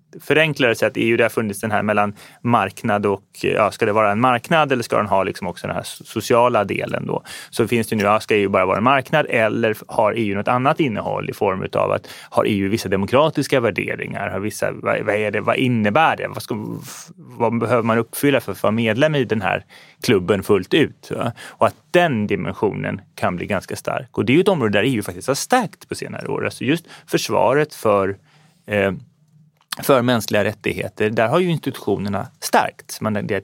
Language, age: Swedish, 30-49